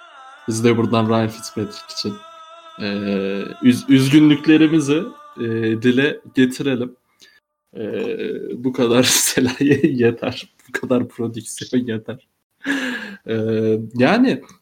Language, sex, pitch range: Turkish, male, 115-180 Hz